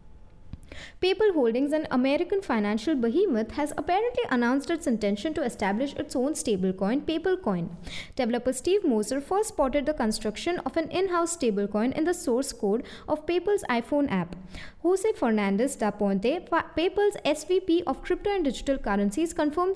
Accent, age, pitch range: Indian, 20-39, 235-345 Hz